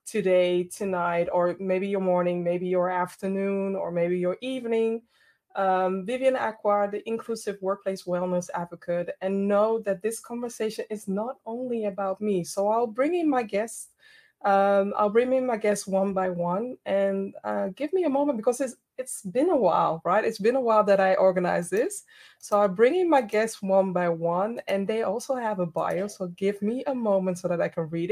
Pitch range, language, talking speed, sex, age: 185-235 Hz, English, 195 wpm, female, 20-39